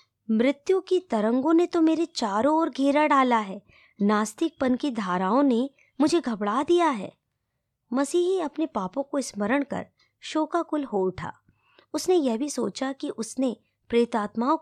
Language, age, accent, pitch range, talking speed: Hindi, 20-39, native, 200-295 Hz, 145 wpm